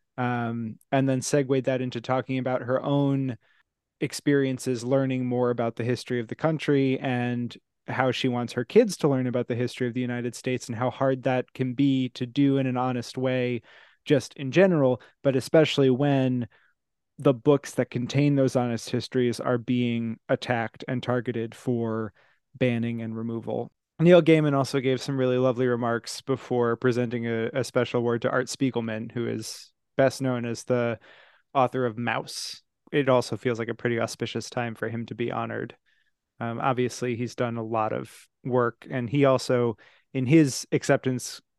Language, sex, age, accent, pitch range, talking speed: English, male, 20-39, American, 120-130 Hz, 175 wpm